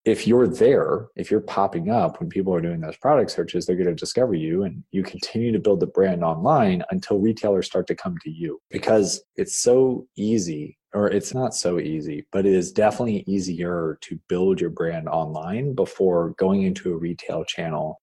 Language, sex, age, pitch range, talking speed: English, male, 30-49, 85-115 Hz, 195 wpm